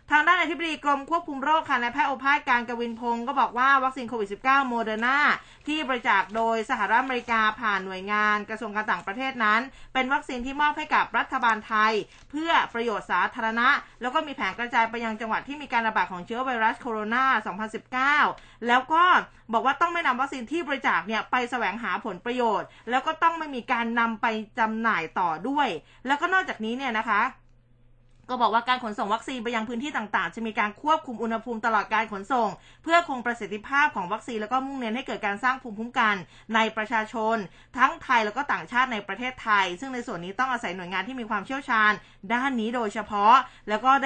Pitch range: 215-265 Hz